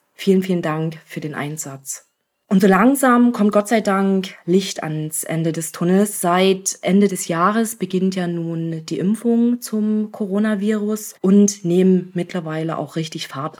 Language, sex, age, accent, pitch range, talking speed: German, female, 20-39, German, 165-205 Hz, 155 wpm